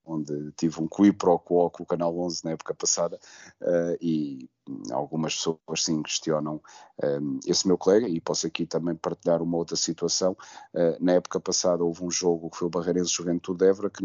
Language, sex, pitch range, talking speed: Portuguese, male, 85-95 Hz, 190 wpm